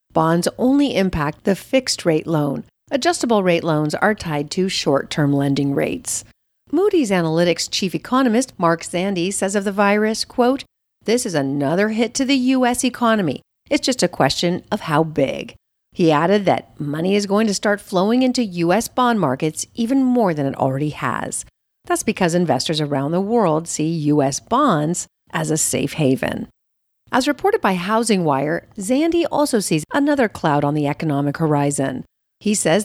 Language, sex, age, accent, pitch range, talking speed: English, female, 50-69, American, 155-235 Hz, 160 wpm